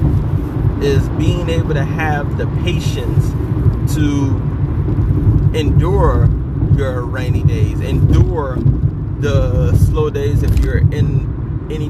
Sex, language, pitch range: male, English, 115-140 Hz